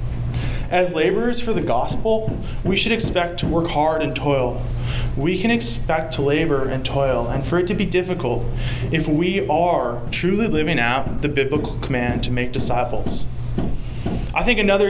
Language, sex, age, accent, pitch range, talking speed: English, male, 20-39, American, 125-180 Hz, 165 wpm